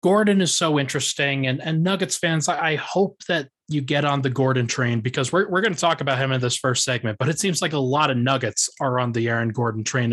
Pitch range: 125-165 Hz